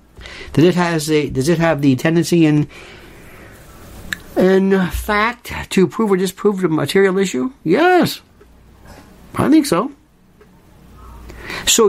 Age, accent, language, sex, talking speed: 60-79, American, English, male, 120 wpm